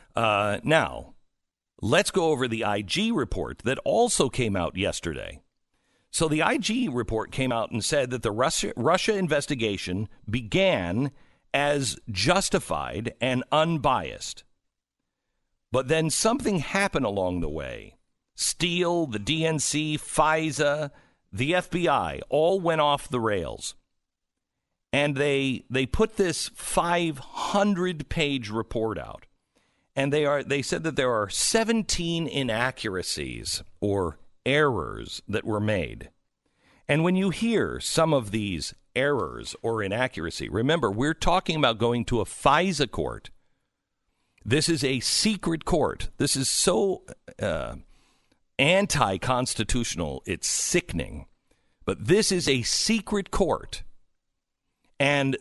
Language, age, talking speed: English, 50-69, 120 wpm